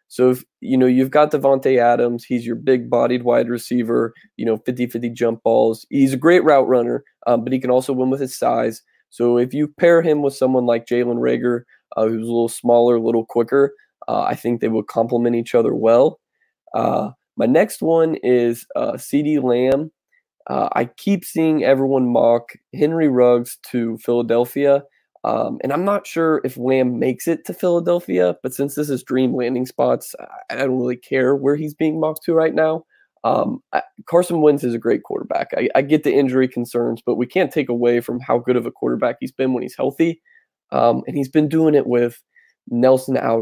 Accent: American